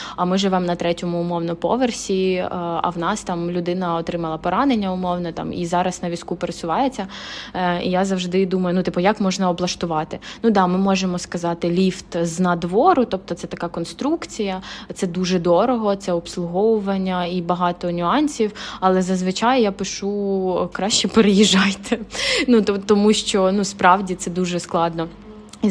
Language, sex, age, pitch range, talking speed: Ukrainian, female, 20-39, 180-205 Hz, 160 wpm